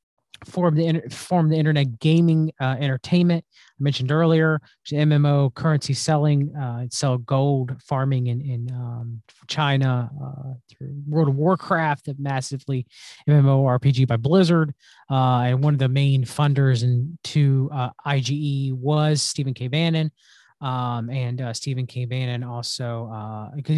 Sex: male